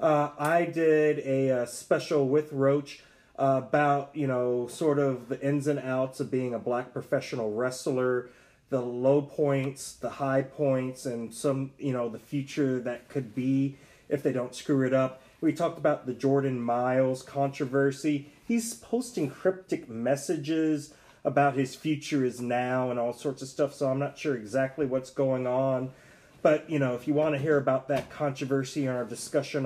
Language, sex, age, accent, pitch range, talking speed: English, male, 30-49, American, 125-150 Hz, 180 wpm